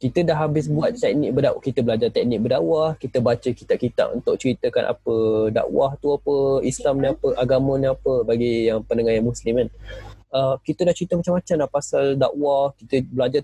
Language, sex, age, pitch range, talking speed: Malay, male, 20-39, 110-145 Hz, 185 wpm